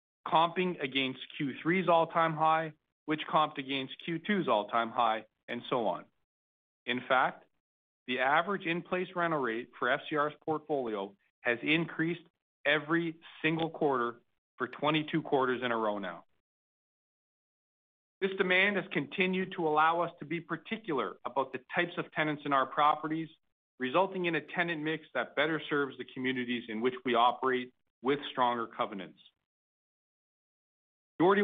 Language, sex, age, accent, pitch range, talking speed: English, male, 40-59, American, 130-165 Hz, 135 wpm